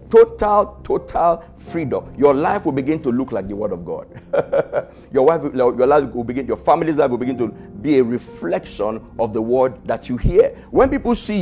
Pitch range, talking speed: 110-160 Hz, 200 wpm